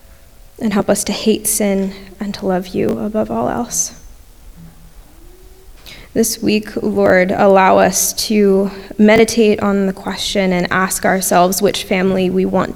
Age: 10-29